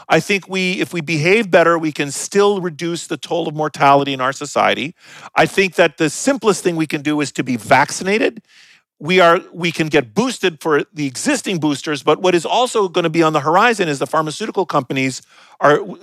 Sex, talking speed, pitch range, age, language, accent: male, 210 wpm, 150-185 Hz, 40-59, English, American